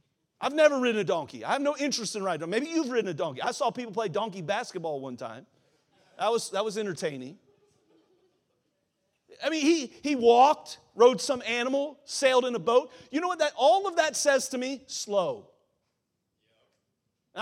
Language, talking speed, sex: English, 185 wpm, male